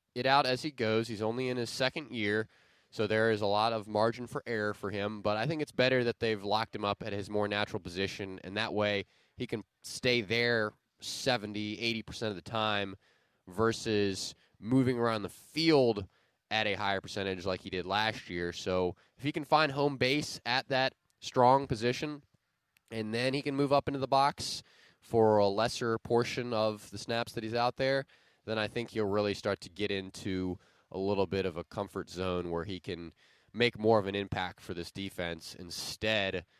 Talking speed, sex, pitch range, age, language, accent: 200 wpm, male, 90-115 Hz, 20-39, English, American